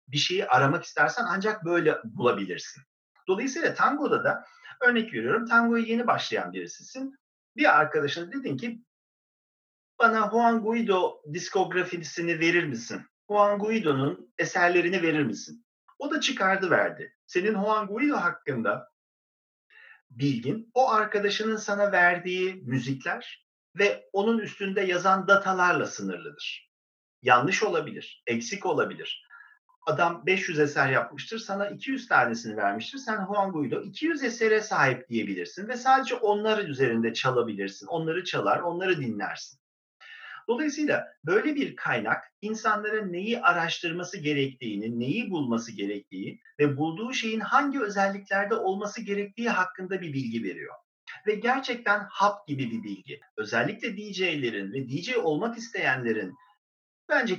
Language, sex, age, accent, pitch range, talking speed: Turkish, male, 40-59, native, 160-230 Hz, 120 wpm